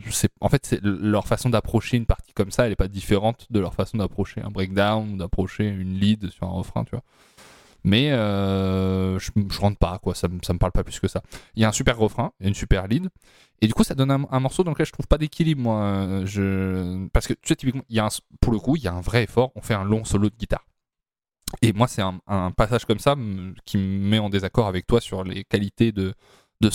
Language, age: French, 20-39